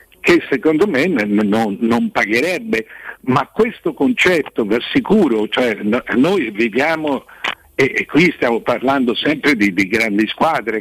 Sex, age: male, 60-79